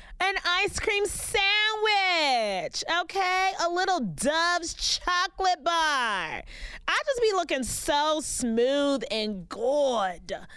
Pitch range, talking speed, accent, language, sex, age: 225-345 Hz, 100 wpm, American, English, female, 20-39